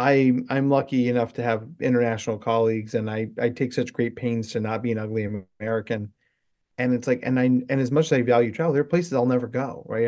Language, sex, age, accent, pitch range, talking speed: English, male, 30-49, American, 115-135 Hz, 240 wpm